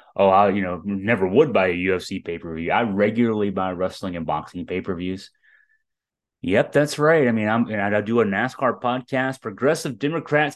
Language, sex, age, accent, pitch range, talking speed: English, male, 30-49, American, 95-130 Hz, 190 wpm